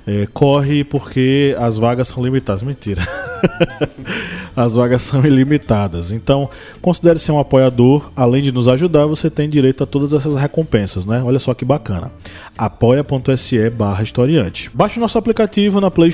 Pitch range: 115-145 Hz